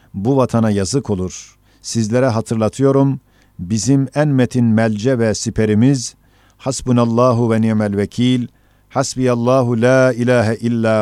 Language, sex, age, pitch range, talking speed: Turkish, male, 50-69, 110-130 Hz, 105 wpm